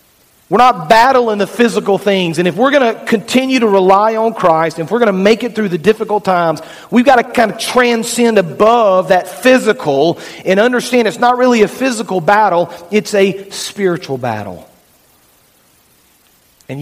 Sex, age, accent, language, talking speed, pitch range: male, 40-59, American, English, 175 wpm, 150-195 Hz